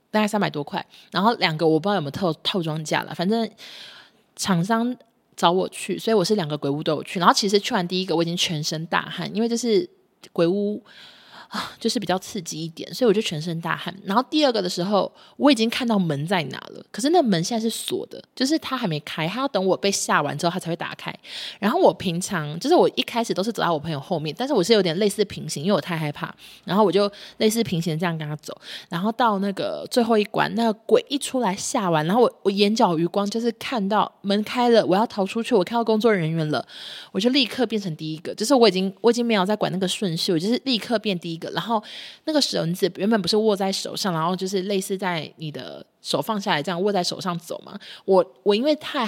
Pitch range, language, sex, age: 175-230 Hz, Chinese, female, 20-39